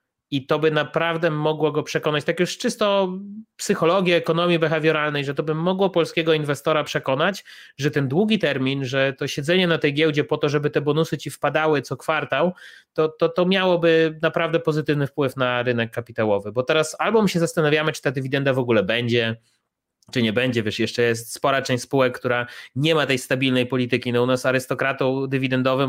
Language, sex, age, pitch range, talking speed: Polish, male, 30-49, 125-160 Hz, 190 wpm